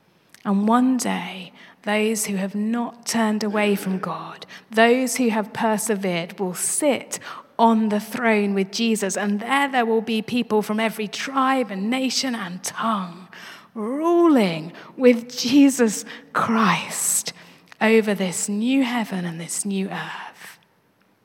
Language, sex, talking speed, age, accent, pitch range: English, female, 135 wpm, 30-49, British, 185-235 Hz